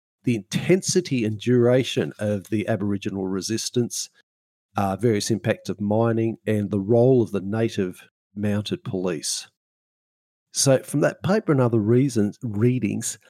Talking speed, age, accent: 125 wpm, 50-69, Australian